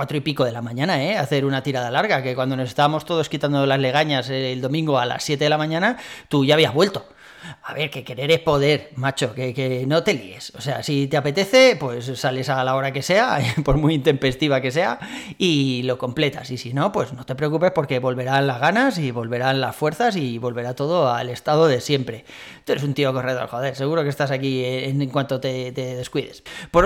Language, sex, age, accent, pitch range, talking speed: Spanish, male, 30-49, Spanish, 130-155 Hz, 225 wpm